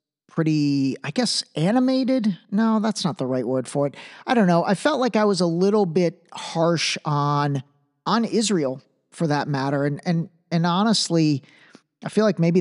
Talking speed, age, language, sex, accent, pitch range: 180 wpm, 50-69, English, male, American, 150-195 Hz